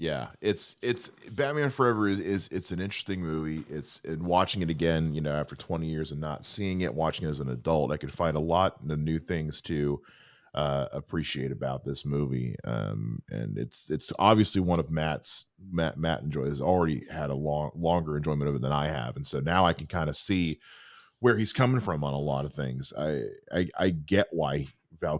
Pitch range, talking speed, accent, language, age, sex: 80-120 Hz, 215 wpm, American, English, 30-49, male